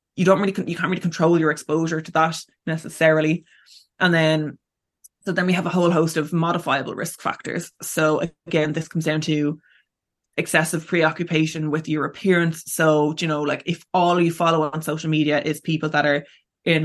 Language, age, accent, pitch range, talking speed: English, 20-39, Irish, 155-170 Hz, 185 wpm